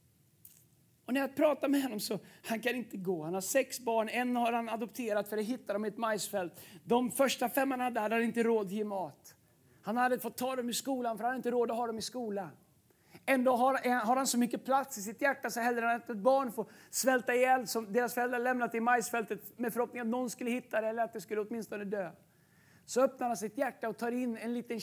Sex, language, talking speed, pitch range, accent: male, Swedish, 250 wpm, 220-260 Hz, native